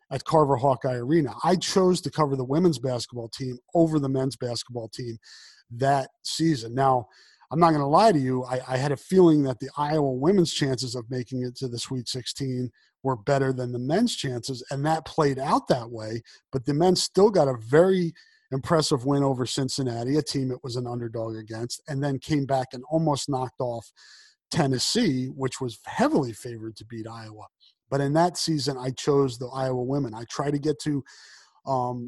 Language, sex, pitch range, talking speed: English, male, 125-155 Hz, 195 wpm